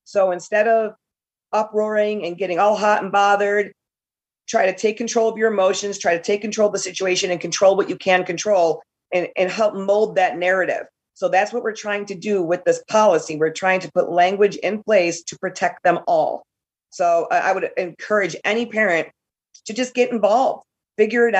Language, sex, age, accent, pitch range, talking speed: English, female, 40-59, American, 175-215 Hz, 195 wpm